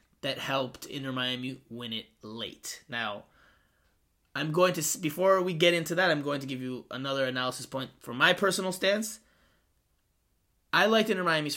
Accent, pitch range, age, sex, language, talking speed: American, 125-165 Hz, 20-39, male, English, 155 wpm